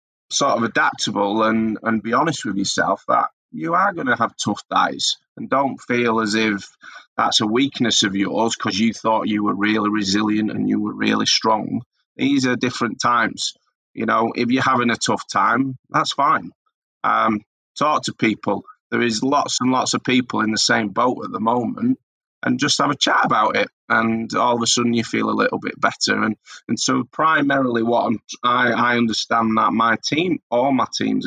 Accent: British